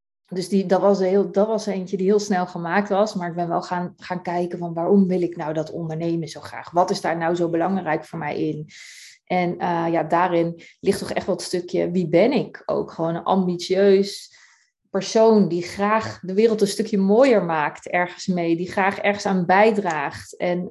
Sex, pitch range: female, 175-200 Hz